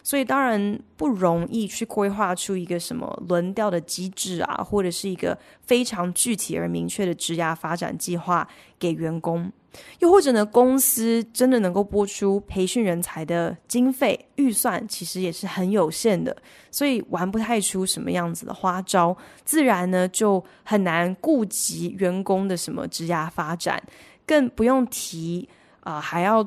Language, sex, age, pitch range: Chinese, female, 20-39, 175-220 Hz